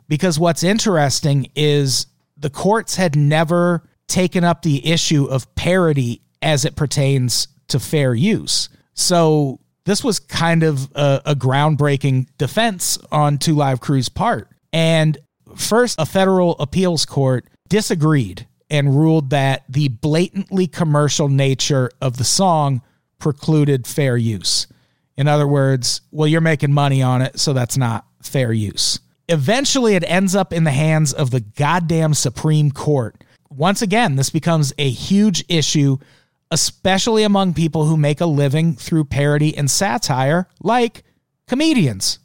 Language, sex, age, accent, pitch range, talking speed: English, male, 40-59, American, 135-165 Hz, 140 wpm